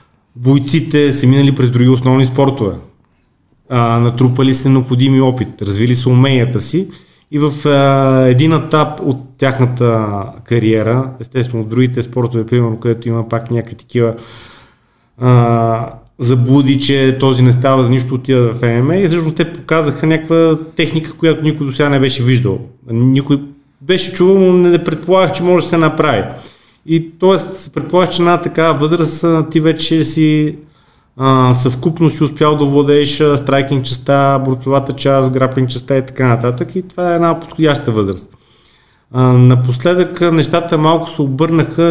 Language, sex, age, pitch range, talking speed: Bulgarian, male, 30-49, 125-155 Hz, 155 wpm